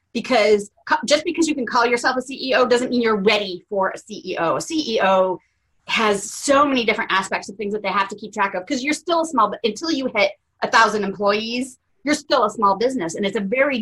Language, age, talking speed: English, 30-49, 225 wpm